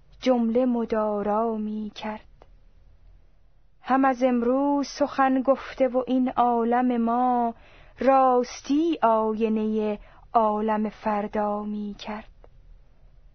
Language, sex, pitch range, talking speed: Persian, female, 220-270 Hz, 85 wpm